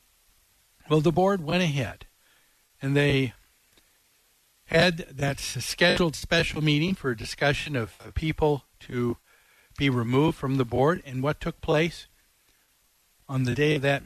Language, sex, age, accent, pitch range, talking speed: English, male, 60-79, American, 130-180 Hz, 135 wpm